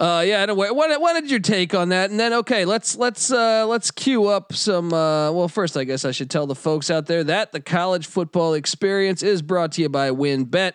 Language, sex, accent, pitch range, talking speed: English, male, American, 135-180 Hz, 240 wpm